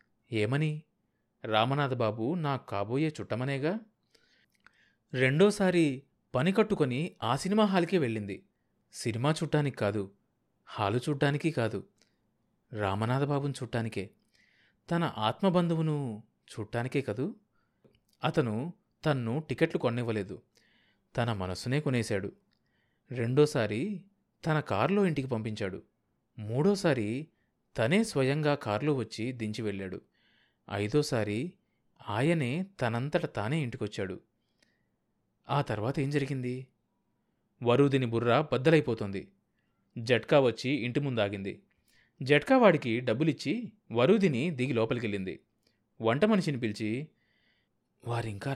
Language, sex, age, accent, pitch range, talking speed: Telugu, male, 30-49, native, 115-160 Hz, 80 wpm